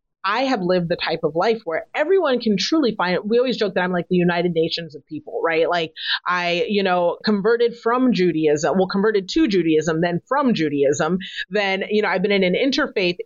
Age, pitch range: 30-49, 175-225 Hz